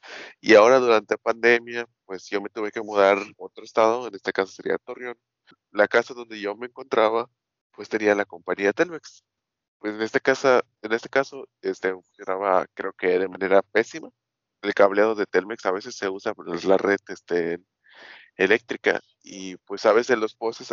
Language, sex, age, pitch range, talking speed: Spanish, male, 20-39, 95-120 Hz, 180 wpm